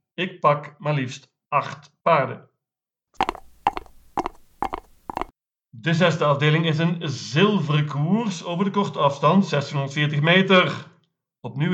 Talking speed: 100 wpm